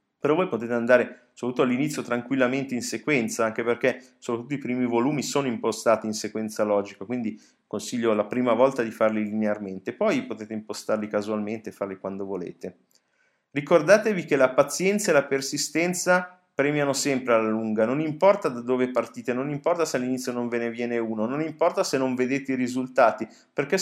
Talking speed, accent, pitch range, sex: 175 wpm, native, 110-130 Hz, male